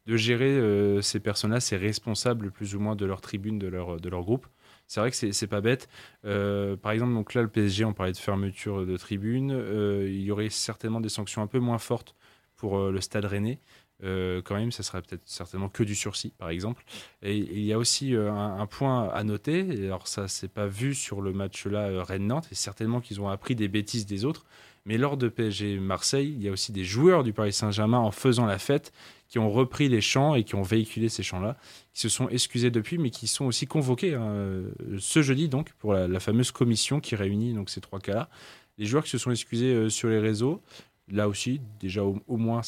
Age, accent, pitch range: 20-39, French, 100-120 Hz